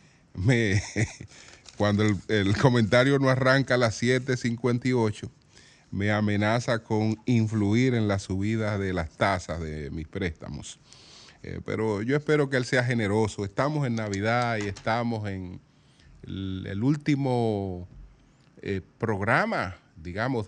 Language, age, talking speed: Spanish, 30-49, 125 wpm